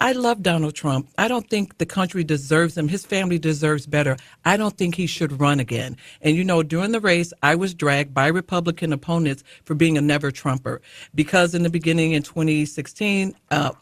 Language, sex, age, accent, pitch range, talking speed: English, female, 50-69, American, 145-175 Hz, 195 wpm